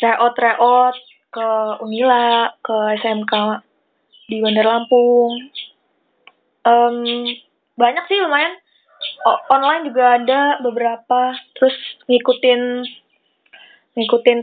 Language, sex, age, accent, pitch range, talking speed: Indonesian, female, 20-39, native, 235-275 Hz, 80 wpm